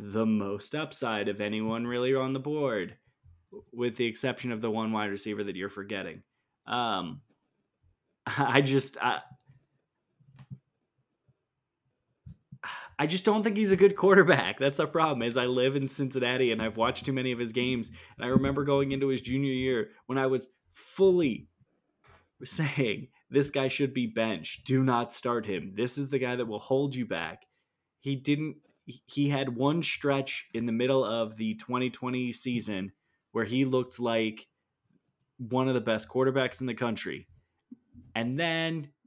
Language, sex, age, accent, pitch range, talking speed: English, male, 20-39, American, 115-135 Hz, 165 wpm